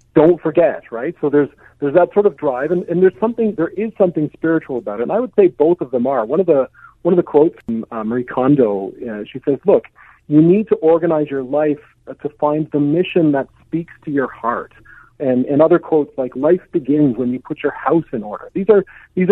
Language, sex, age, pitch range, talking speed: English, male, 40-59, 125-170 Hz, 230 wpm